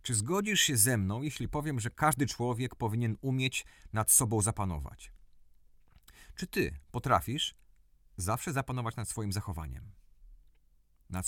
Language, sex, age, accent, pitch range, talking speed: Polish, male, 40-59, native, 85-130 Hz, 130 wpm